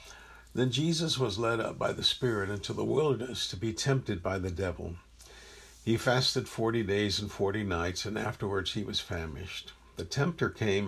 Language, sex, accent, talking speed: English, male, American, 175 wpm